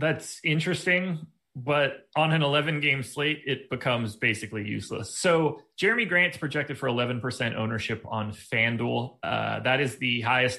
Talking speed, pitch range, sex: 140 wpm, 130-180 Hz, male